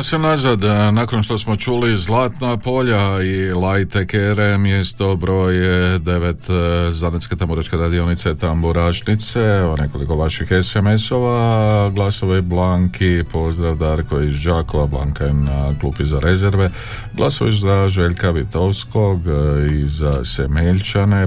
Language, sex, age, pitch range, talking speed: Croatian, male, 50-69, 75-100 Hz, 110 wpm